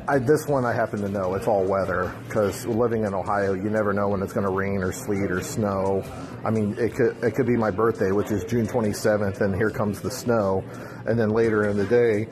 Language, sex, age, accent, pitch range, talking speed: English, male, 40-59, American, 105-125 Hz, 245 wpm